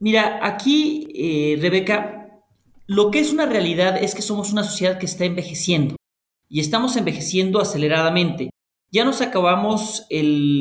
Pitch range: 170-225 Hz